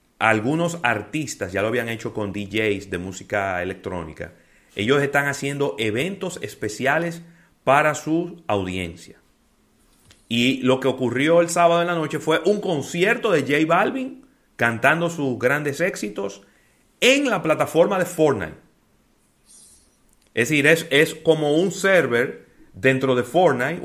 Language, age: Spanish, 30-49